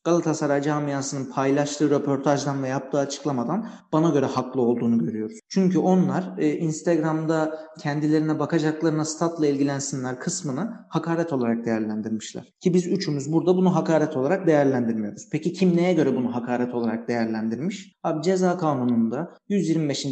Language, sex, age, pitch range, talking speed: Turkish, male, 40-59, 145-170 Hz, 130 wpm